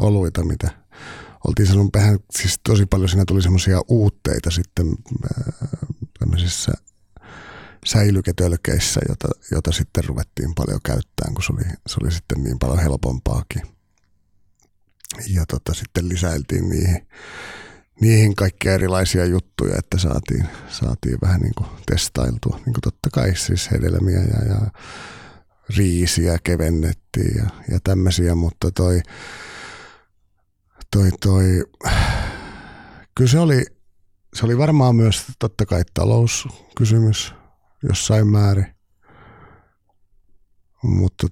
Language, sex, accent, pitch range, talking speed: Finnish, male, native, 85-105 Hz, 105 wpm